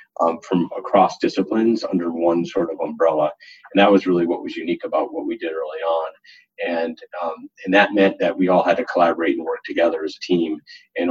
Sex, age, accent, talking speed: male, 30-49, American, 215 wpm